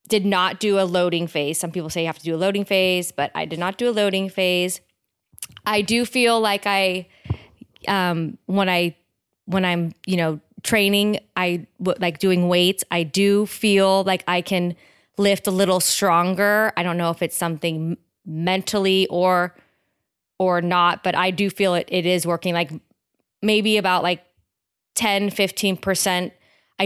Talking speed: 170 wpm